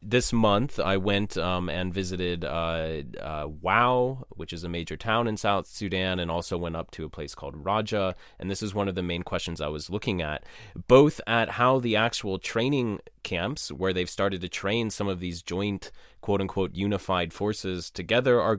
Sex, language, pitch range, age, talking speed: male, English, 85-105 Hz, 20-39, 195 wpm